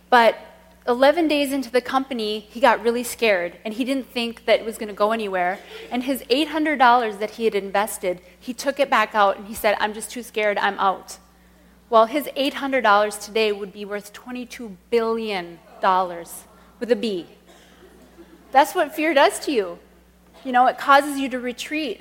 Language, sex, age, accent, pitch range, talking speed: English, female, 30-49, American, 210-275 Hz, 185 wpm